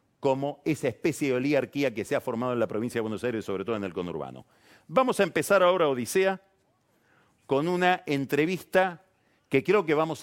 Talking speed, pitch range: 190 wpm, 125-165 Hz